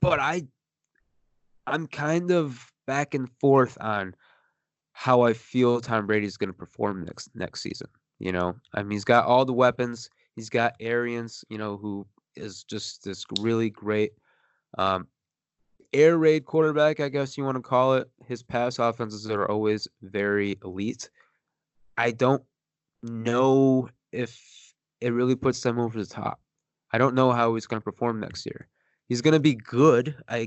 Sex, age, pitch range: male, 20-39, 110-135 Hz